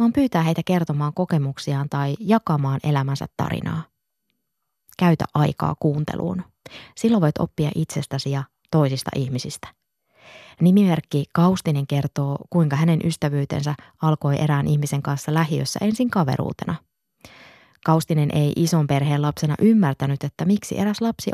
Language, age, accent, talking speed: Finnish, 20-39, native, 120 wpm